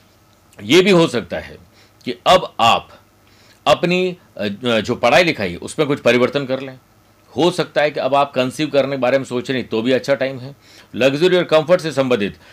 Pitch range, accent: 110-155 Hz, native